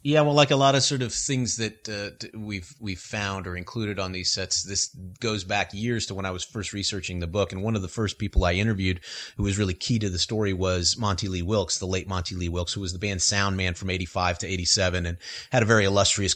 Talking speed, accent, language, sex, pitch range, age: 255 wpm, American, English, male, 95-115 Hz, 30-49